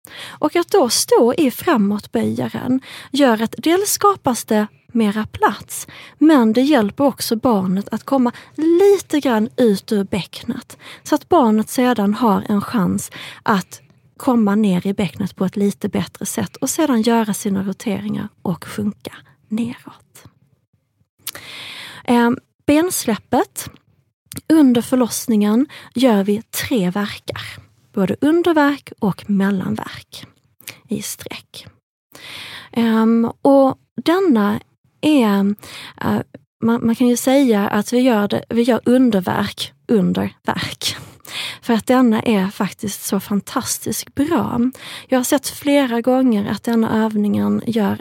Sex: female